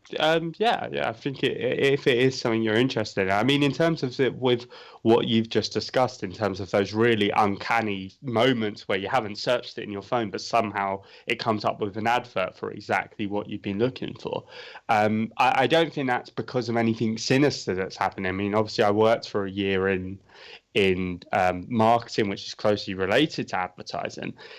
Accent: British